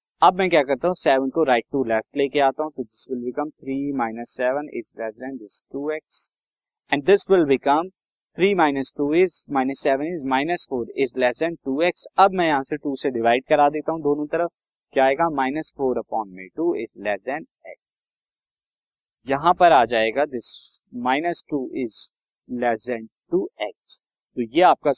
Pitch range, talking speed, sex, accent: 125-170 Hz, 80 wpm, male, native